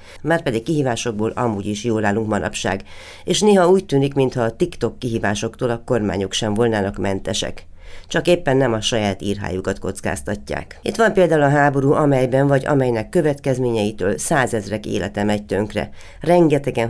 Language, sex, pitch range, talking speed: Hungarian, female, 100-130 Hz, 150 wpm